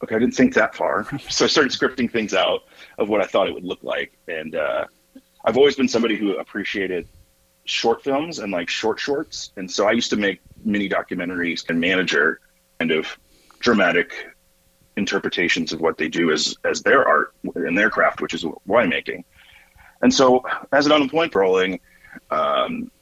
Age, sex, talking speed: 30-49, male, 180 wpm